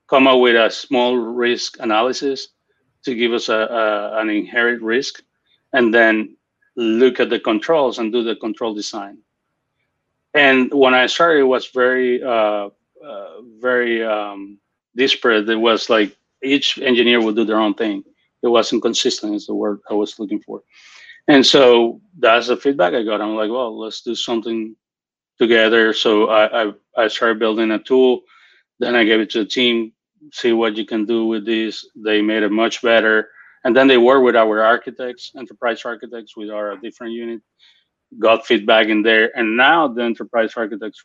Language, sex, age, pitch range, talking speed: English, male, 30-49, 110-125 Hz, 175 wpm